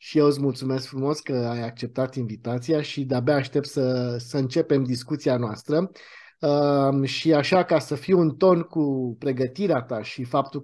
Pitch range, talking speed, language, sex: 130-175 Hz, 165 wpm, Romanian, male